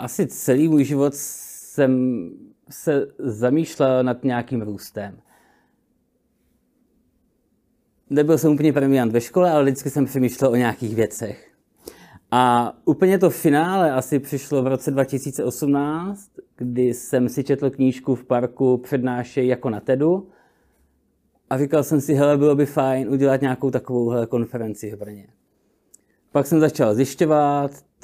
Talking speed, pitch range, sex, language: 135 wpm, 120-145 Hz, male, Czech